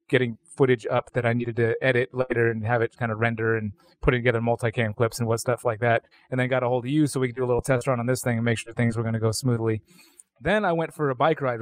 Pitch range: 115-135 Hz